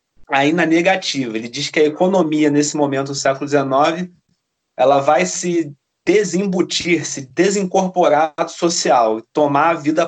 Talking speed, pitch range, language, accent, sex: 145 wpm, 140-170 Hz, Portuguese, Brazilian, male